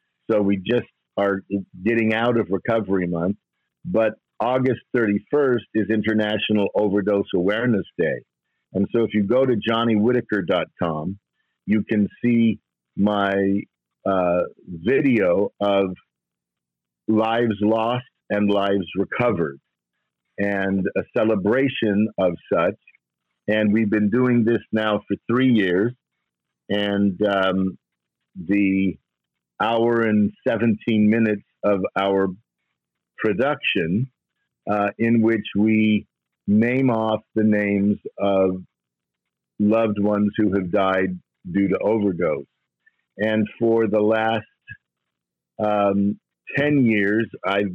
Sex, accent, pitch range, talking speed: male, American, 100-110 Hz, 105 wpm